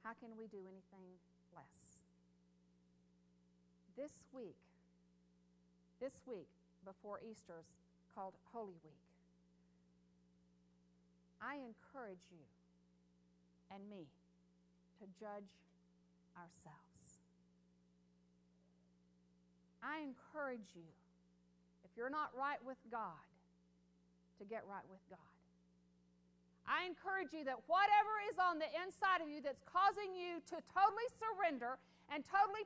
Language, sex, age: English, female, 50-69